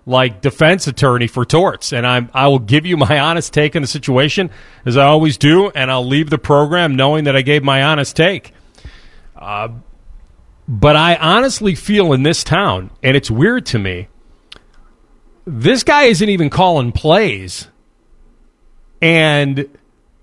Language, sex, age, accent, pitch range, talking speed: English, male, 40-59, American, 130-190 Hz, 155 wpm